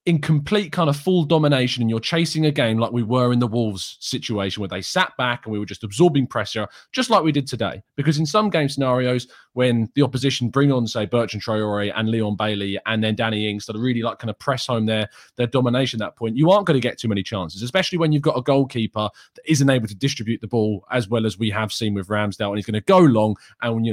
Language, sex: English, male